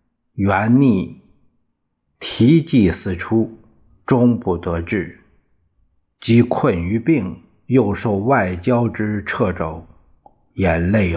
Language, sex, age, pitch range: Chinese, male, 50-69, 90-130 Hz